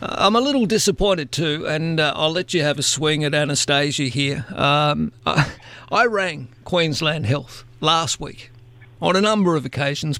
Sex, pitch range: male, 135-170 Hz